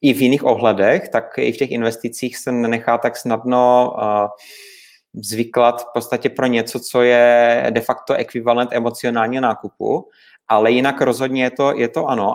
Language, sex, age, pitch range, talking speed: Czech, male, 30-49, 115-125 Hz, 155 wpm